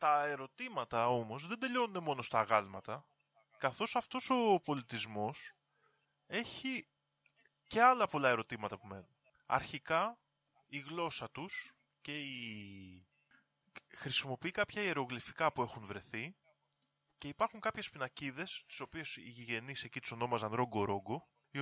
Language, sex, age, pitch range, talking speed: Greek, male, 20-39, 110-165 Hz, 125 wpm